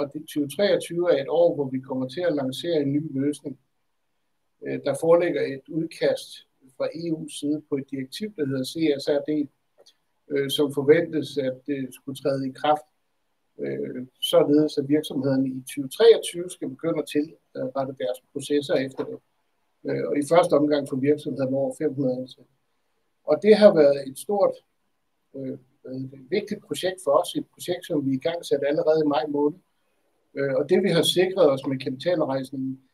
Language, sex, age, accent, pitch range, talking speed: Danish, male, 60-79, native, 135-160 Hz, 165 wpm